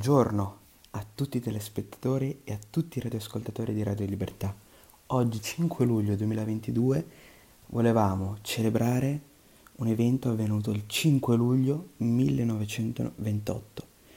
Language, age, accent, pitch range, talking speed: Italian, 30-49, native, 105-125 Hz, 110 wpm